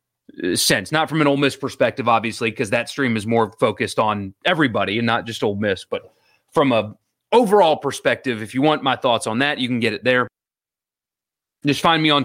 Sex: male